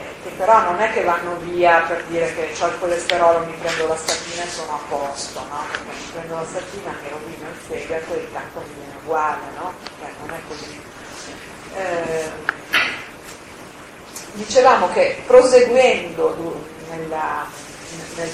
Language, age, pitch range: Italian, 40-59, 160-205 Hz